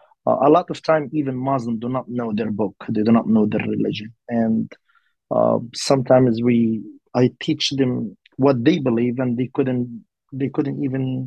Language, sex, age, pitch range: English, male, 30-49, 120-140 Hz